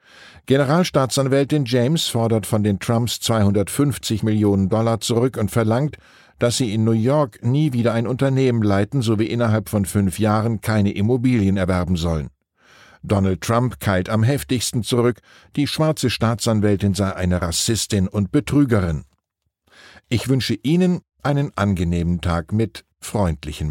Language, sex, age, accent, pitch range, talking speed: German, male, 50-69, German, 100-130 Hz, 135 wpm